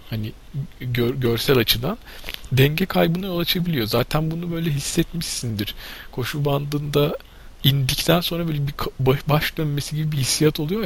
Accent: native